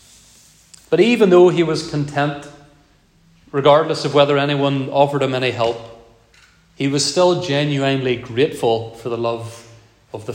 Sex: male